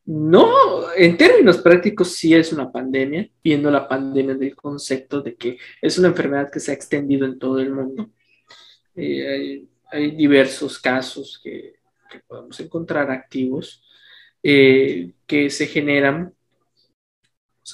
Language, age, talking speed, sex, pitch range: Spanish, 20-39, 140 wpm, male, 135-160 Hz